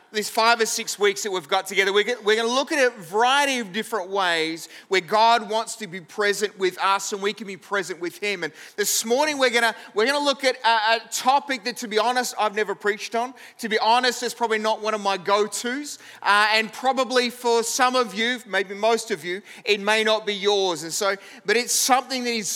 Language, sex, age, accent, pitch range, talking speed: English, male, 30-49, Australian, 200-235 Hz, 235 wpm